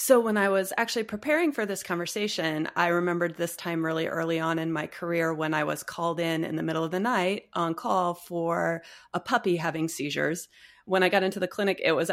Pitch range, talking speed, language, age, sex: 170-225 Hz, 225 wpm, English, 30-49, female